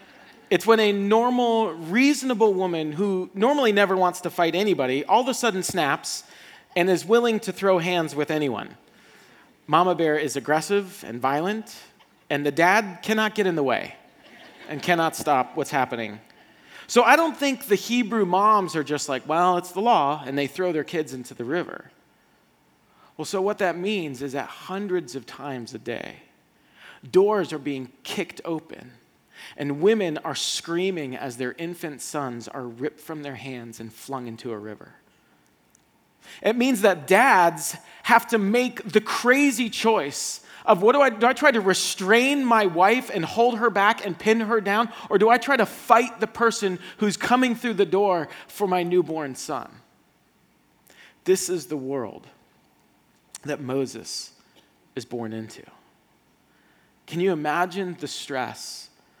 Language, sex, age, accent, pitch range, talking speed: English, male, 40-59, American, 145-215 Hz, 165 wpm